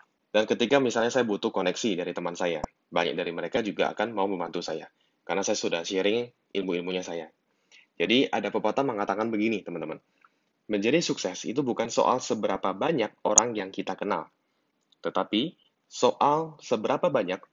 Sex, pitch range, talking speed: male, 95-120 Hz, 150 wpm